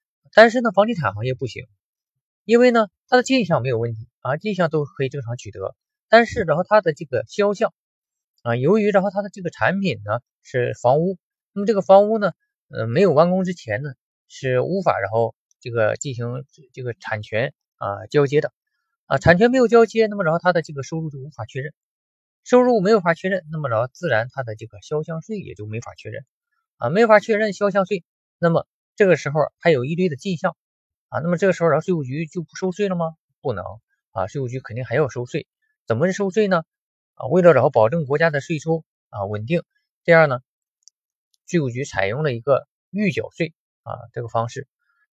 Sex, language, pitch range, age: male, Chinese, 125-200 Hz, 20-39